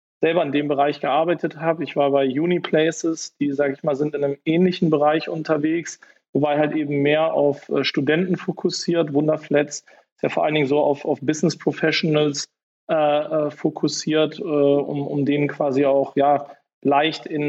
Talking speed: 170 wpm